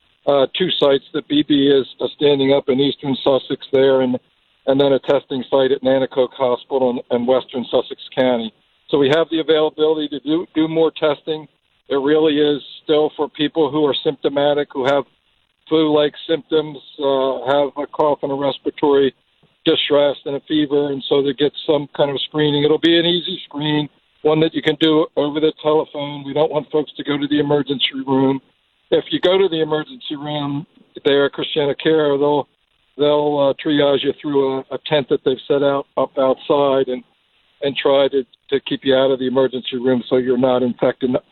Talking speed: 195 wpm